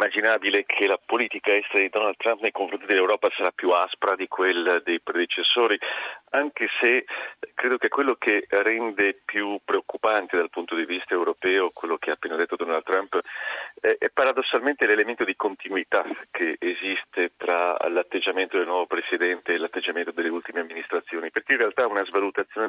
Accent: native